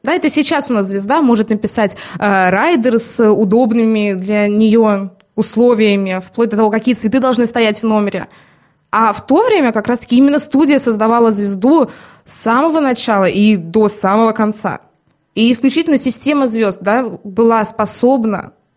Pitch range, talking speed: 215-290 Hz, 150 wpm